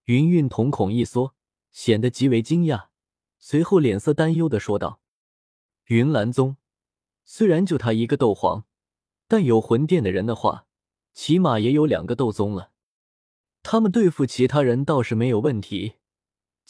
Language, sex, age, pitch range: Chinese, male, 20-39, 110-155 Hz